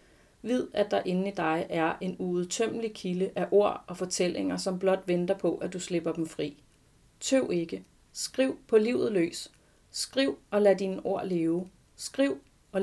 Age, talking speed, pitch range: 30-49, 175 wpm, 170-210 Hz